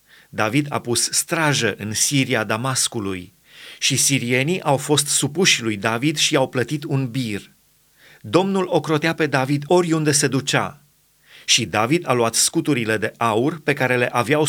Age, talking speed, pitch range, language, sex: 30-49, 155 wpm, 120-150 Hz, Romanian, male